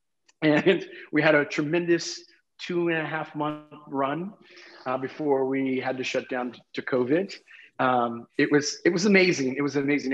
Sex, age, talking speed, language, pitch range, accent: male, 30-49, 180 wpm, English, 120-145 Hz, American